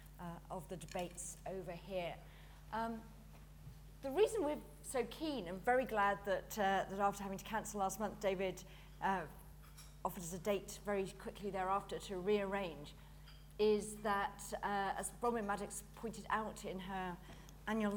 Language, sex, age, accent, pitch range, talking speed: English, female, 40-59, British, 190-235 Hz, 155 wpm